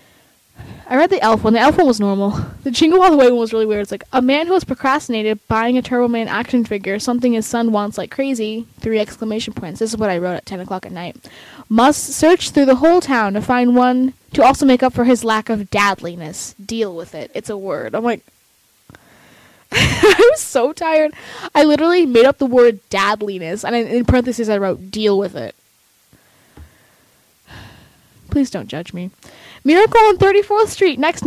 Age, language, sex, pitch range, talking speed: 10-29, English, female, 205-270 Hz, 205 wpm